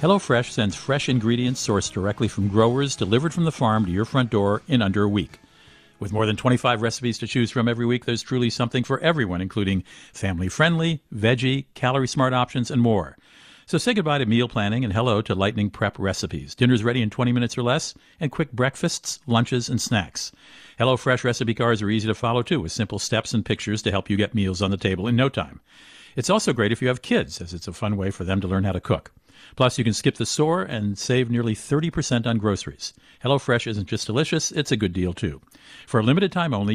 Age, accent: 50-69, American